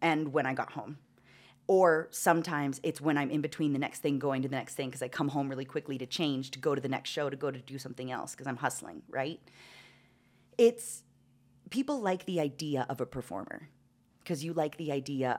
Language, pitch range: English, 130-160 Hz